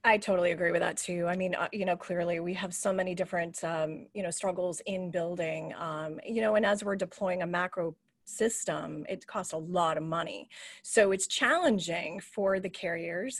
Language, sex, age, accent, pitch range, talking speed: English, female, 30-49, American, 180-255 Hz, 195 wpm